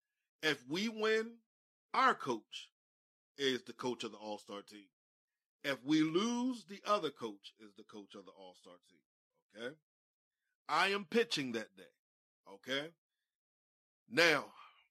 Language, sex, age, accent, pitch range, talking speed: English, male, 40-59, American, 105-155 Hz, 135 wpm